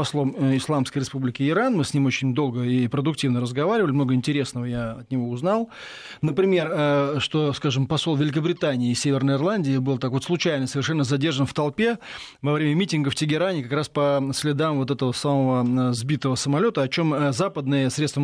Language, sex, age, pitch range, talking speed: Russian, male, 20-39, 135-165 Hz, 170 wpm